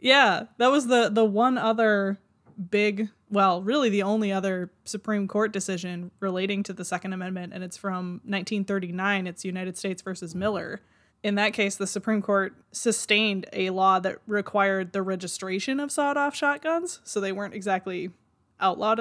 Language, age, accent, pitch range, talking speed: English, 20-39, American, 185-210 Hz, 165 wpm